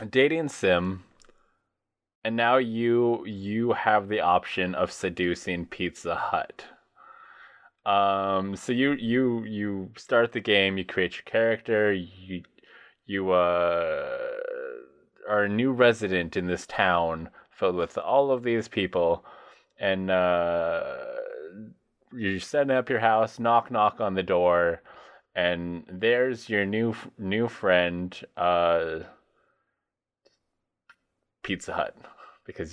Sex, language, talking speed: male, English, 115 wpm